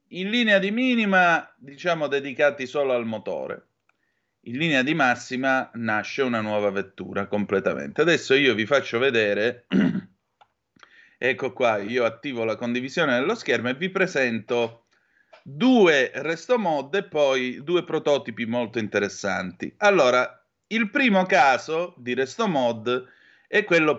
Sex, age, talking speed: male, 30-49, 125 wpm